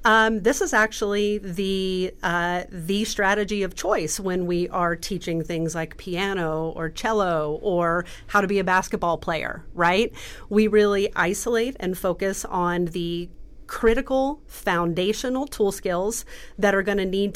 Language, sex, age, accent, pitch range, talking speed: English, female, 30-49, American, 180-225 Hz, 145 wpm